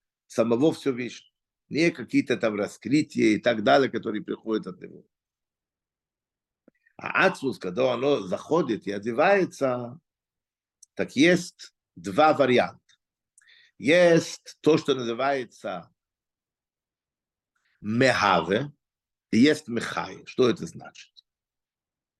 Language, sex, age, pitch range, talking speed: Russian, male, 50-69, 125-175 Hz, 95 wpm